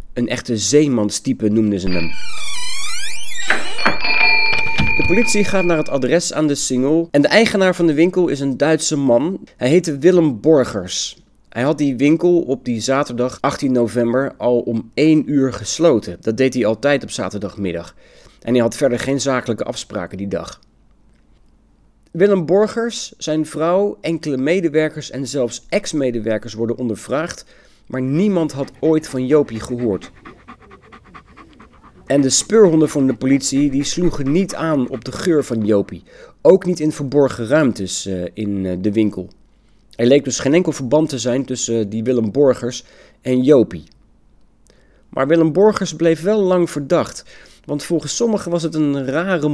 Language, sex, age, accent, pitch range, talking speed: Dutch, male, 40-59, Dutch, 120-160 Hz, 155 wpm